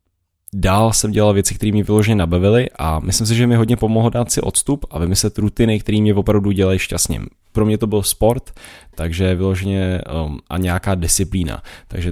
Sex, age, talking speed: male, 10-29, 190 wpm